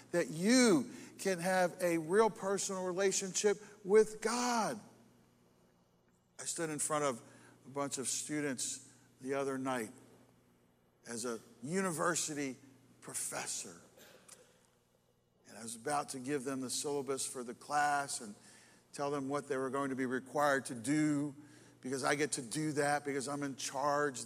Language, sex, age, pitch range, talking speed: English, male, 50-69, 115-160 Hz, 150 wpm